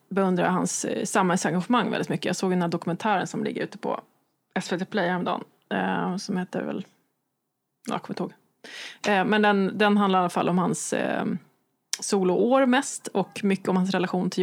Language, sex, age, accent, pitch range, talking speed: Swedish, female, 20-39, native, 190-220 Hz, 185 wpm